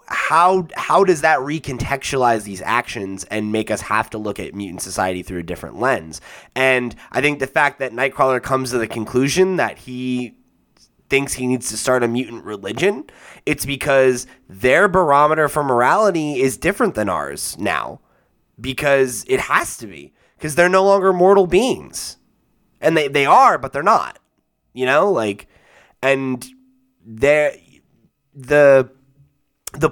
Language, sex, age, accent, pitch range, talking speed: English, male, 20-39, American, 110-140 Hz, 155 wpm